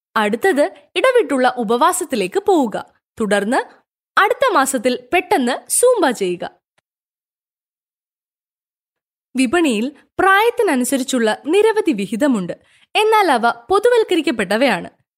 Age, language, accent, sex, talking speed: 20-39, Malayalam, native, female, 65 wpm